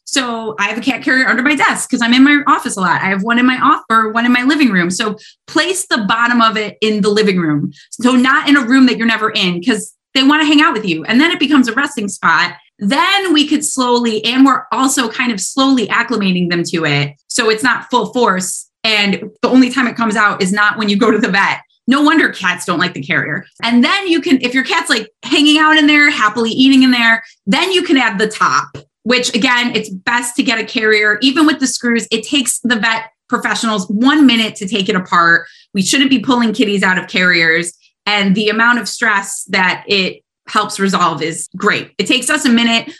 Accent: American